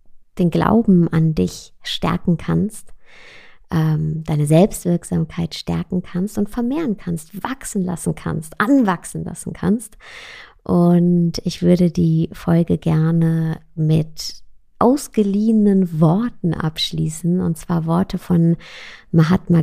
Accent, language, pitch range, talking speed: German, German, 160-190 Hz, 105 wpm